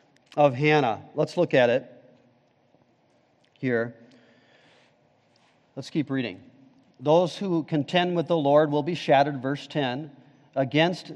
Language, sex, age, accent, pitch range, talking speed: English, male, 40-59, American, 145-195 Hz, 120 wpm